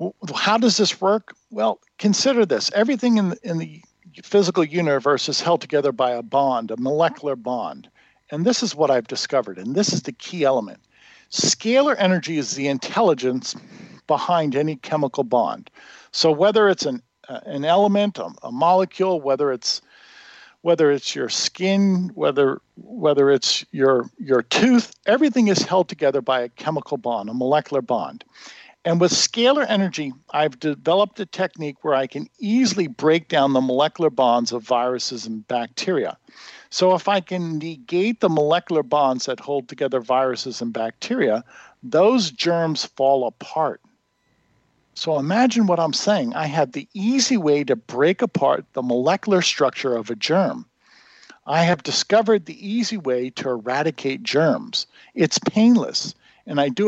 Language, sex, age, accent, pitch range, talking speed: English, male, 50-69, American, 135-205 Hz, 155 wpm